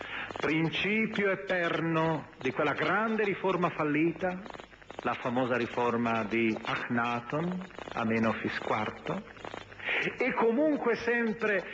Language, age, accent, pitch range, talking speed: Italian, 40-59, native, 135-200 Hz, 85 wpm